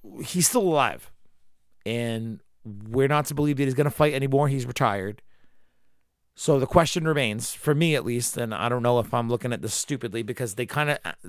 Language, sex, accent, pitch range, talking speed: English, male, American, 105-140 Hz, 190 wpm